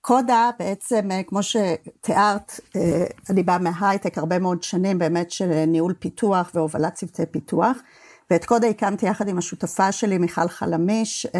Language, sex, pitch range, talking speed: English, female, 175-215 Hz, 135 wpm